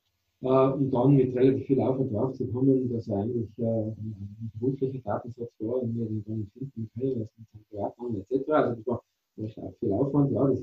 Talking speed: 210 wpm